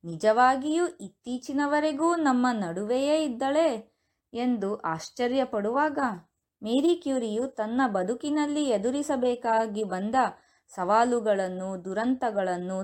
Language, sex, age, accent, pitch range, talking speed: Kannada, female, 20-39, native, 190-255 Hz, 70 wpm